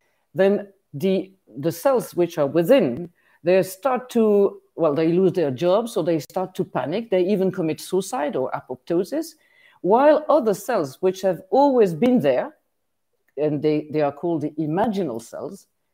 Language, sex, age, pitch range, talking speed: English, female, 50-69, 165-215 Hz, 160 wpm